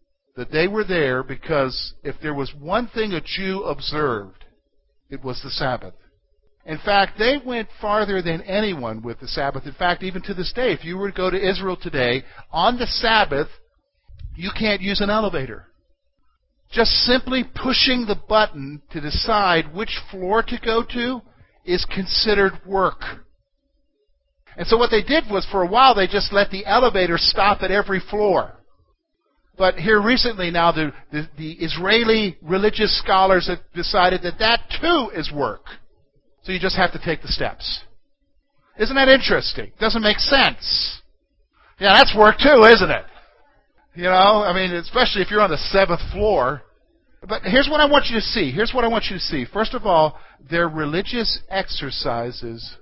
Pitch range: 160-220 Hz